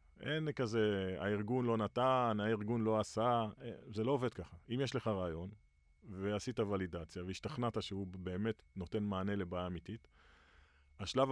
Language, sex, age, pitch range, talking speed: Hebrew, male, 30-49, 90-115 Hz, 140 wpm